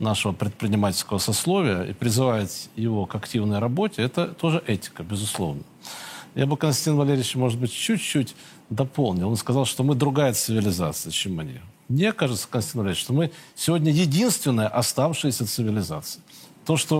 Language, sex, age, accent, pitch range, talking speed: Russian, male, 40-59, native, 125-160 Hz, 145 wpm